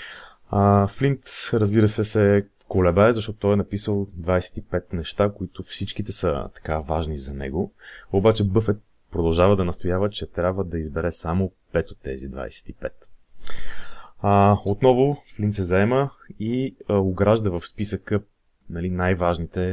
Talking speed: 130 wpm